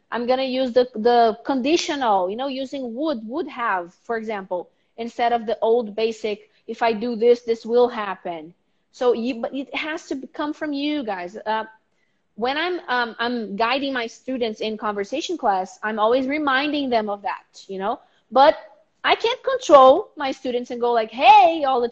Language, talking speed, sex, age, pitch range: English, 185 wpm, female, 30-49, 220-290 Hz